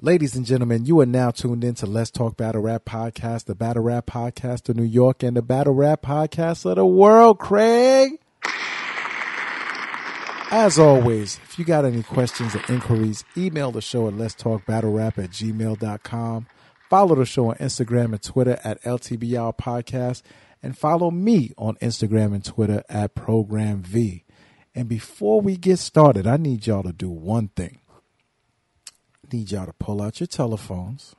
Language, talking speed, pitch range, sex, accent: English, 165 wpm, 110-150 Hz, male, American